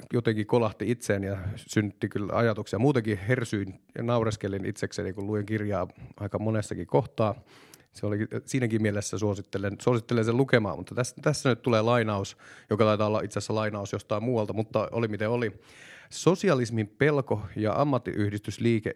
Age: 30-49